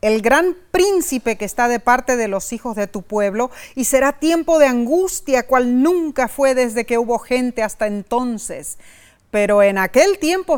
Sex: female